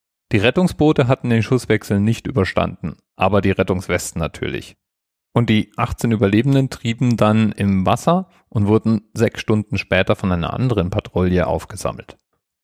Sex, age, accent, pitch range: male, 40-59, German, 95-115 Hz